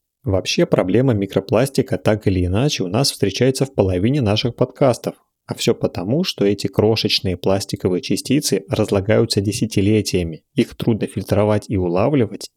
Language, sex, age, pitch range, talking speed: Russian, male, 30-49, 95-120 Hz, 135 wpm